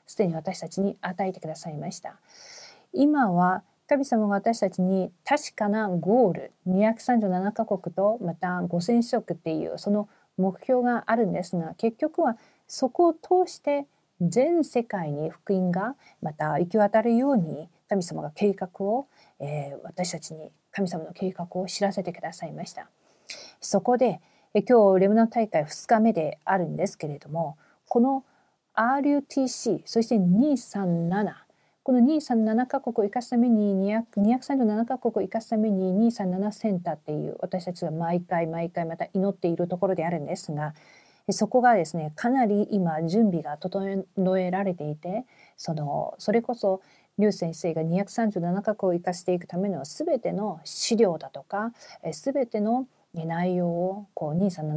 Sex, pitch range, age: female, 175-230 Hz, 40-59